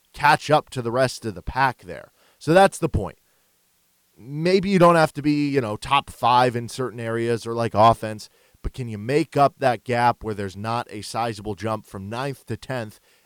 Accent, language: American, English